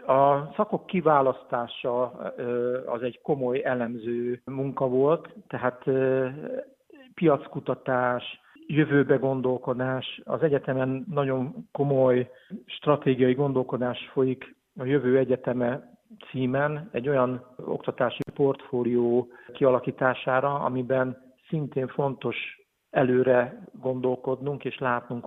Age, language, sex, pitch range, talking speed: 50-69, Hungarian, male, 125-145 Hz, 85 wpm